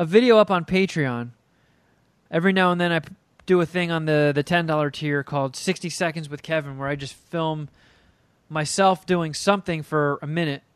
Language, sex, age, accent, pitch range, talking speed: English, male, 20-39, American, 145-175 Hz, 190 wpm